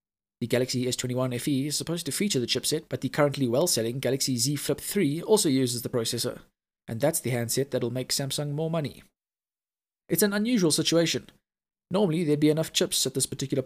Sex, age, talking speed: male, 20-39, 190 wpm